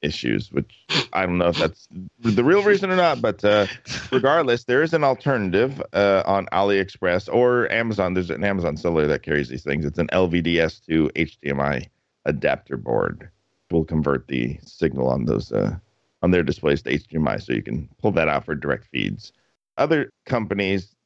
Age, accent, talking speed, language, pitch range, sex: 50-69, American, 175 wpm, English, 85-105 Hz, male